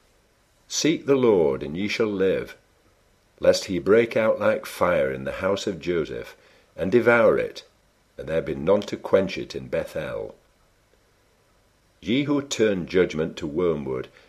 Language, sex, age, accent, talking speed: English, male, 50-69, British, 150 wpm